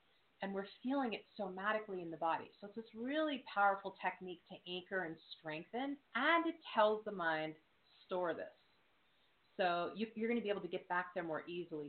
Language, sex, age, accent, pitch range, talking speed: English, female, 30-49, American, 165-205 Hz, 185 wpm